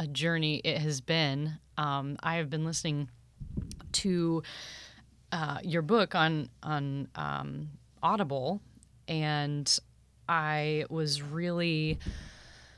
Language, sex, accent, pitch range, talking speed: English, female, American, 150-180 Hz, 105 wpm